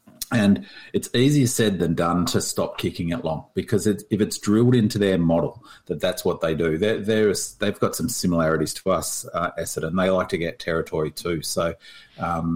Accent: Australian